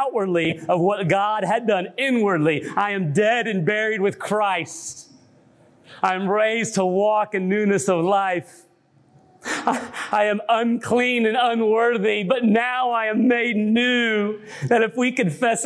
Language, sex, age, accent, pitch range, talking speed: English, male, 40-59, American, 135-210 Hz, 145 wpm